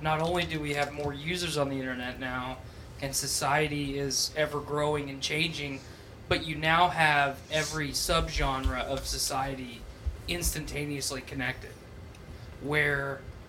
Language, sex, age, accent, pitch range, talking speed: English, male, 20-39, American, 125-155 Hz, 130 wpm